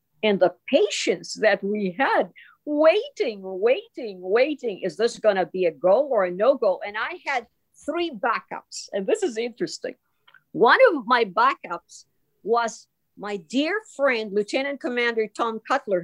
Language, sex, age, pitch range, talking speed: English, female, 50-69, 215-315 Hz, 150 wpm